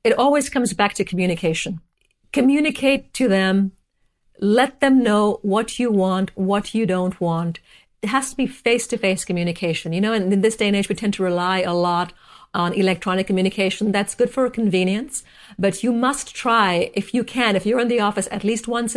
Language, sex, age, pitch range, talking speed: English, female, 50-69, 185-235 Hz, 195 wpm